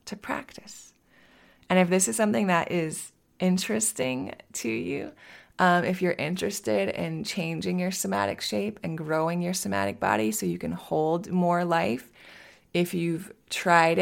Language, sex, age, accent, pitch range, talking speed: English, female, 20-39, American, 155-185 Hz, 145 wpm